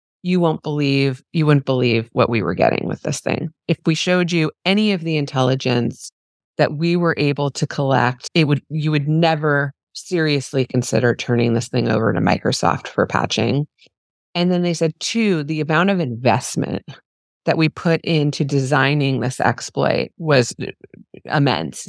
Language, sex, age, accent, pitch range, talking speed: English, female, 30-49, American, 125-160 Hz, 165 wpm